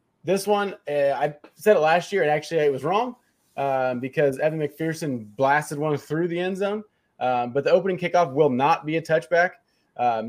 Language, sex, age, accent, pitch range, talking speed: English, male, 20-39, American, 125-170 Hz, 190 wpm